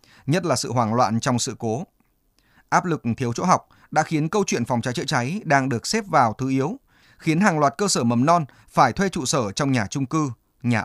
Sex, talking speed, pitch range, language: male, 240 wpm, 120-160 Hz, Vietnamese